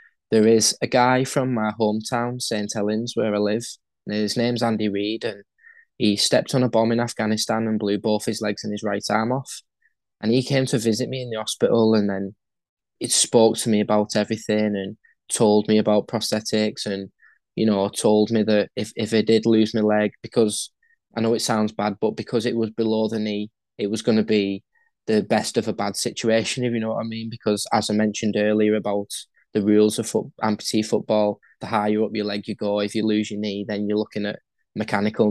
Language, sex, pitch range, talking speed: English, male, 105-115 Hz, 220 wpm